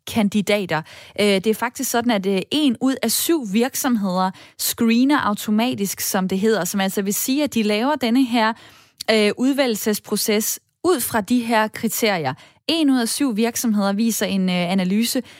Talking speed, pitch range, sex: 150 wpm, 200-255 Hz, female